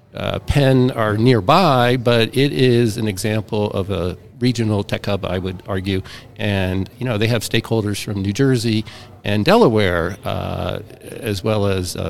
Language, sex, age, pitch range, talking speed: English, male, 50-69, 105-125 Hz, 165 wpm